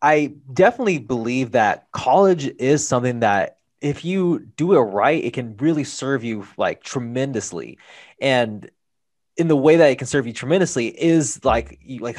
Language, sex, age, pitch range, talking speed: English, male, 20-39, 110-130 Hz, 160 wpm